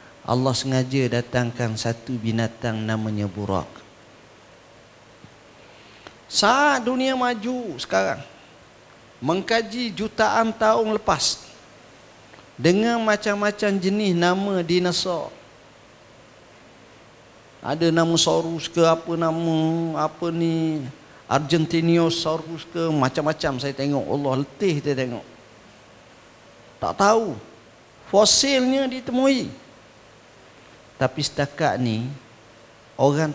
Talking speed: 80 wpm